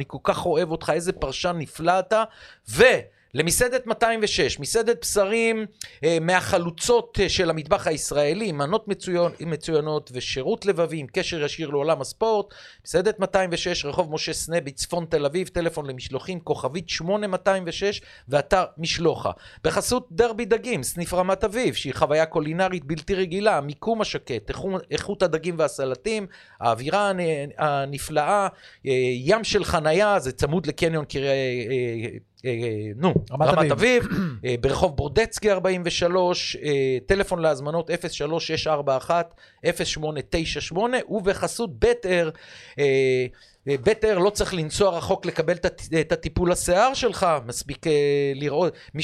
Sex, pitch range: male, 145-195 Hz